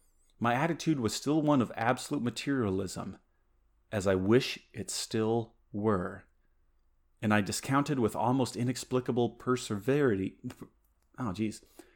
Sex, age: male, 30-49